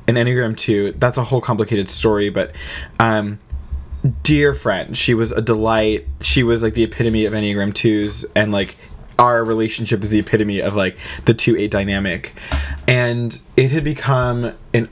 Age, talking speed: 20-39, 170 wpm